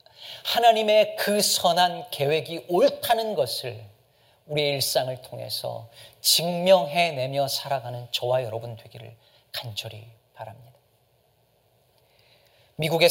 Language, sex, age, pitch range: Korean, male, 40-59, 115-145 Hz